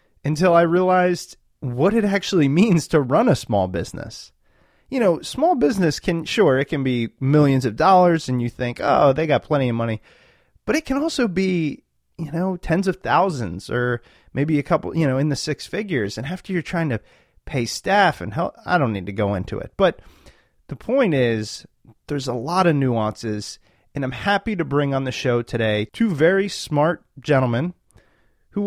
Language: English